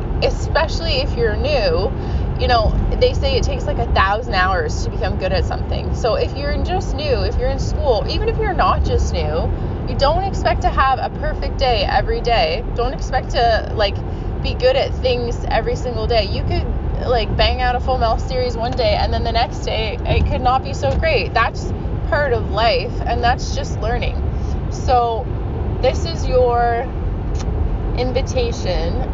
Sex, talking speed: female, 185 wpm